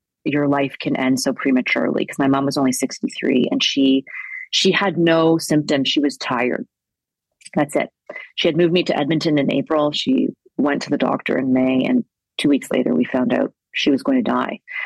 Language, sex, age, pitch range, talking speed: English, female, 30-49, 155-205 Hz, 200 wpm